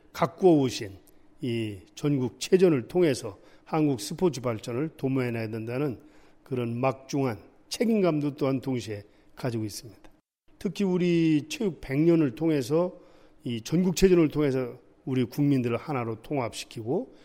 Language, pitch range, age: Korean, 125-175 Hz, 40-59